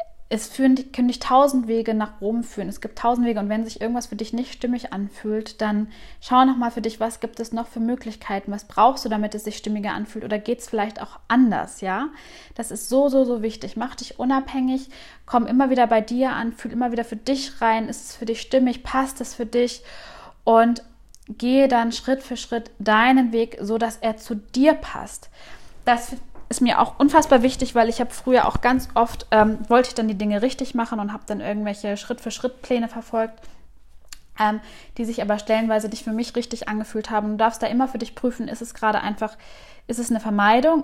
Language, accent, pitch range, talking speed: German, German, 210-245 Hz, 210 wpm